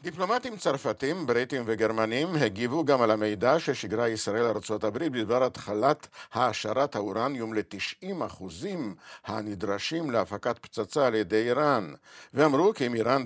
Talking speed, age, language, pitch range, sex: 120 wpm, 50-69, Hebrew, 110-155 Hz, male